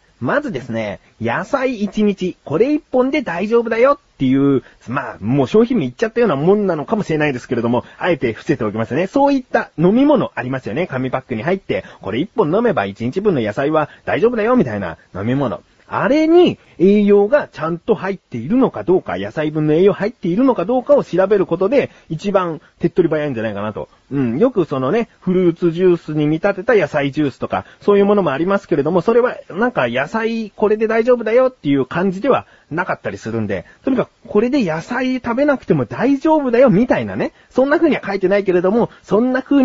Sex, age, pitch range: male, 30-49, 150-245 Hz